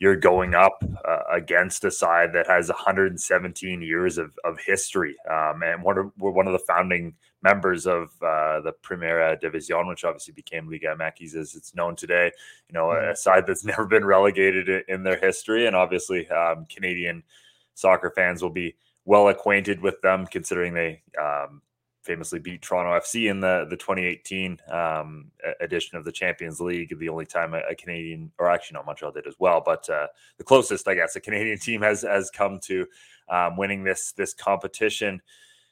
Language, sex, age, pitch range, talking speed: English, male, 20-39, 85-100 Hz, 185 wpm